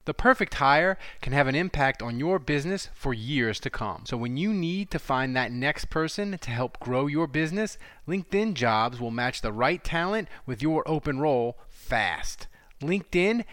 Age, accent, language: 30-49, American, English